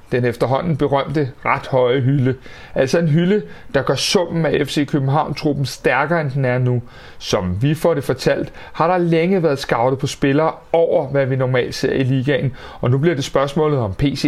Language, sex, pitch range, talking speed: Danish, male, 130-160 Hz, 195 wpm